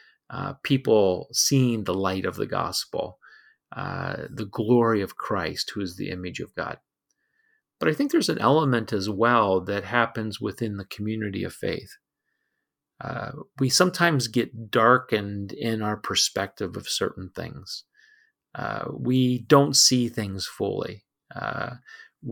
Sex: male